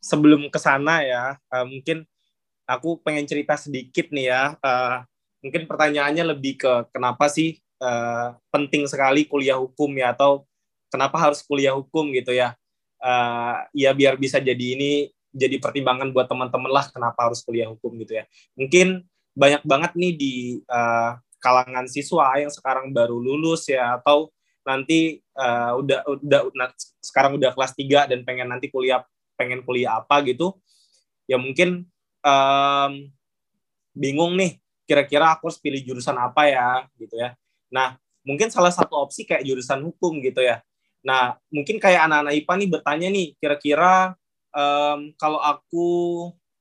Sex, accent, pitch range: male, native, 130-160 Hz